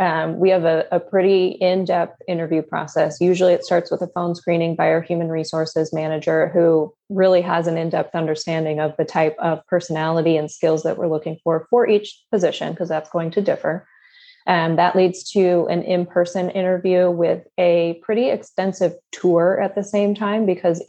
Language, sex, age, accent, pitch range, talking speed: English, female, 20-39, American, 165-190 Hz, 180 wpm